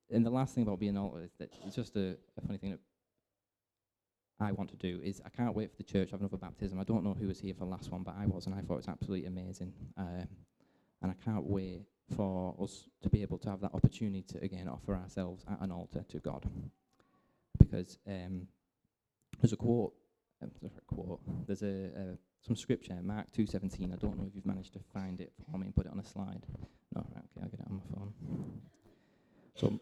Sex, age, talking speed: male, 20-39, 235 wpm